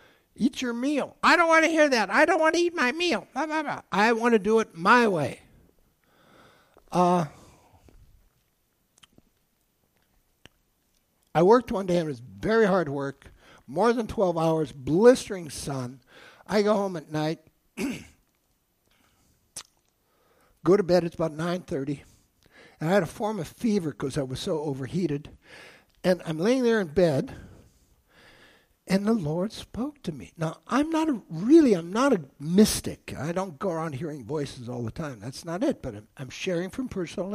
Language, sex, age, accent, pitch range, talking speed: English, male, 60-79, American, 150-225 Hz, 165 wpm